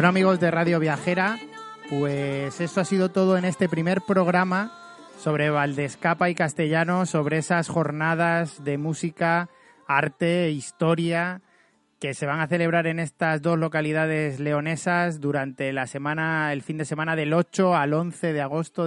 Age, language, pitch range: 30-49, Spanish, 150-175 Hz